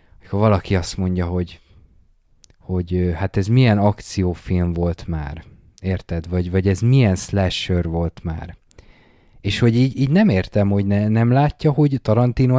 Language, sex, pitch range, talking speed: Hungarian, male, 90-120 Hz, 155 wpm